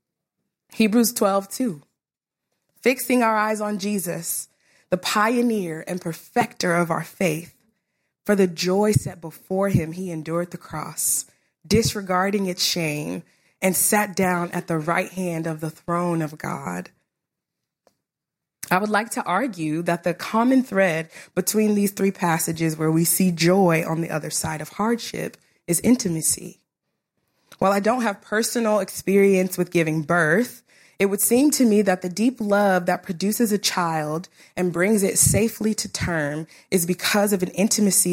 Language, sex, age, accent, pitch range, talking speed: English, female, 20-39, American, 165-205 Hz, 155 wpm